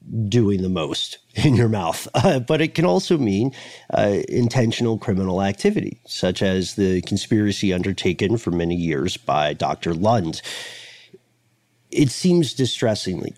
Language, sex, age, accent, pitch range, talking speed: English, male, 40-59, American, 100-135 Hz, 135 wpm